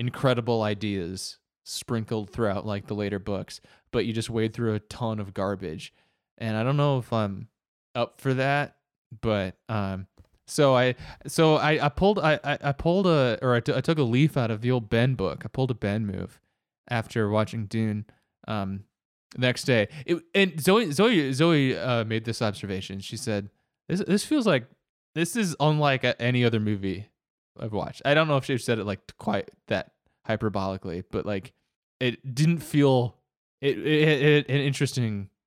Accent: American